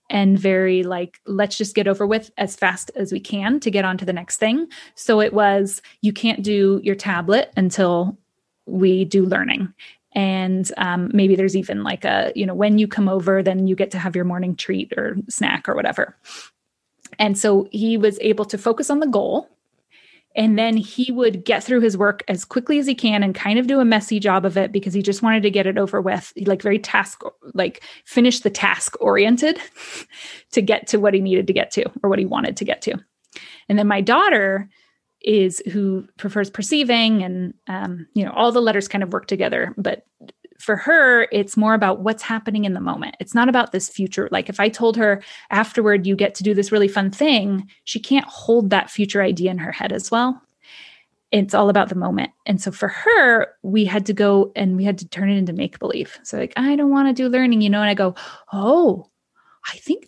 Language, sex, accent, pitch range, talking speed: English, female, American, 195-240 Hz, 220 wpm